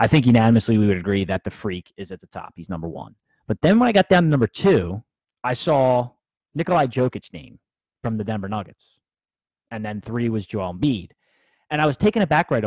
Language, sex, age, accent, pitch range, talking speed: English, male, 30-49, American, 105-135 Hz, 220 wpm